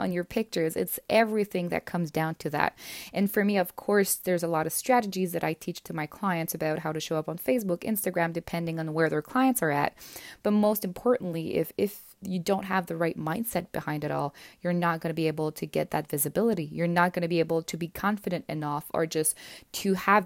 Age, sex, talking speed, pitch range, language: 20-39, female, 235 wpm, 165-195 Hz, English